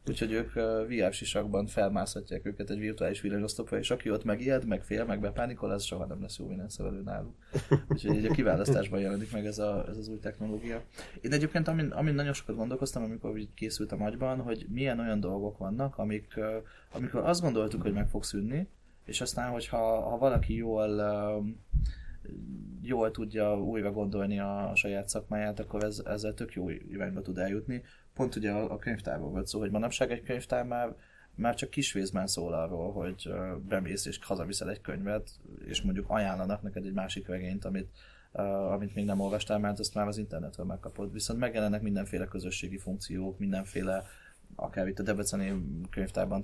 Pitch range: 100-115 Hz